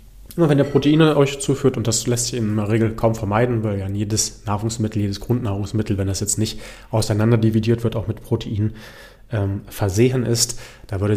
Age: 30-49